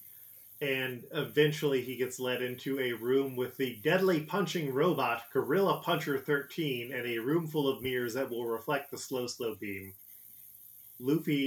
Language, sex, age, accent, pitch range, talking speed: English, male, 30-49, American, 120-145 Hz, 155 wpm